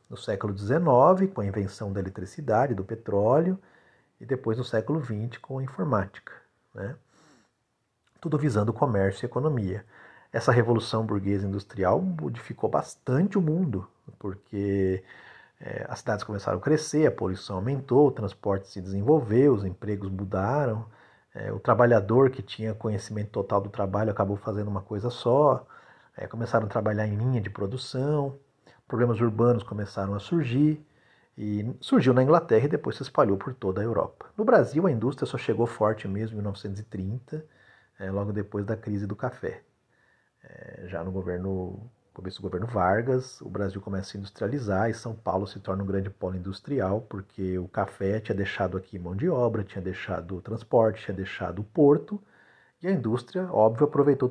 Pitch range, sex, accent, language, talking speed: 100-130 Hz, male, Brazilian, Portuguese, 160 wpm